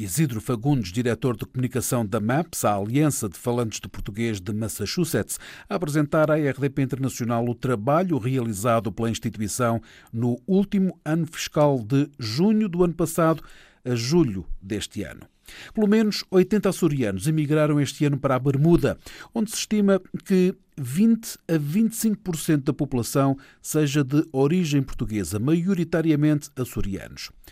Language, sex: Portuguese, male